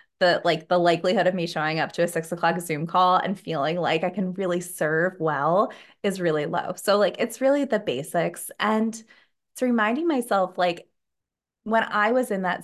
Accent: American